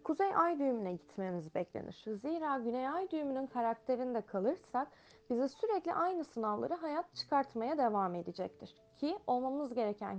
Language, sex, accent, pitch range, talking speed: Turkish, female, native, 210-315 Hz, 130 wpm